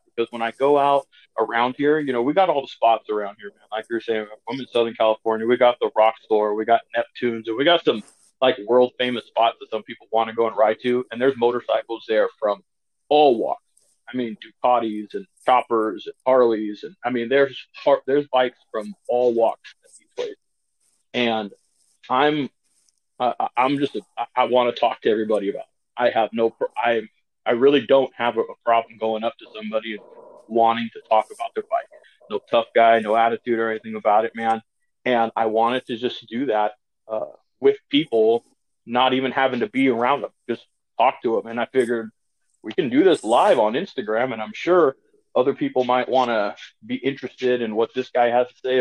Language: English